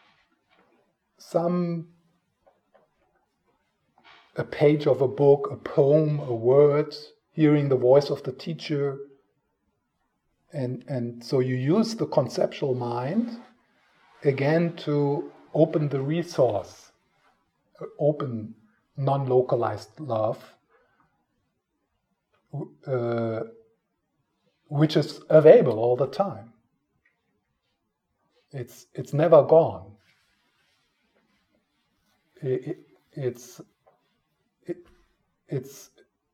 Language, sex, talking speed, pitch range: English, male, 80 wpm, 120-155 Hz